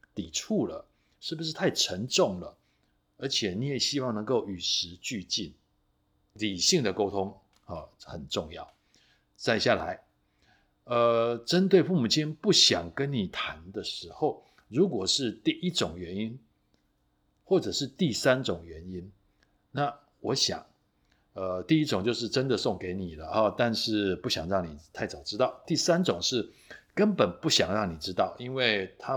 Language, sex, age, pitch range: Chinese, male, 60-79, 90-130 Hz